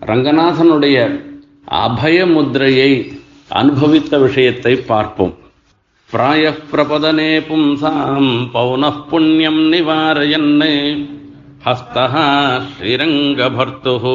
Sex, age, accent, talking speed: male, 50-69, native, 50 wpm